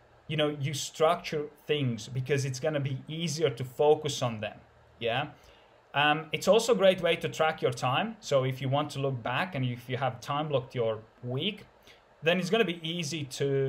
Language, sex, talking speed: English, male, 200 wpm